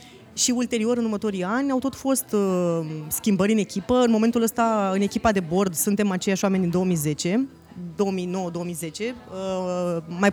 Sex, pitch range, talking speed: female, 180-240 Hz, 155 wpm